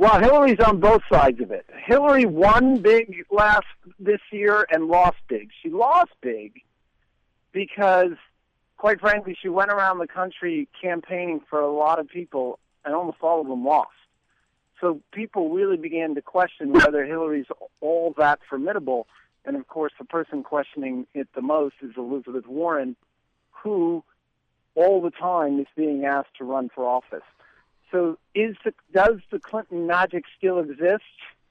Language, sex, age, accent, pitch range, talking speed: English, male, 50-69, American, 145-205 Hz, 155 wpm